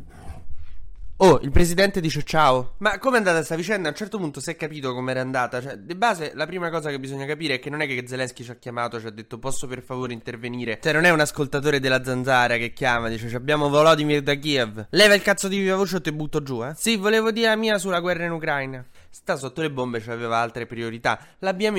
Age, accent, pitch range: 20-39, native, 125-160 Hz